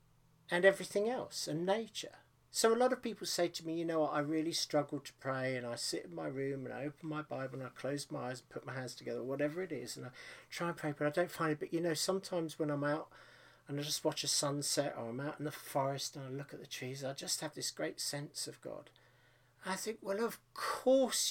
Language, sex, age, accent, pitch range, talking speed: English, male, 50-69, British, 130-180 Hz, 260 wpm